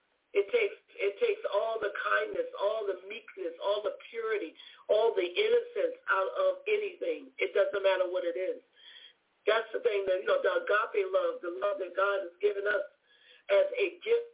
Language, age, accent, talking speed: English, 50-69, American, 185 wpm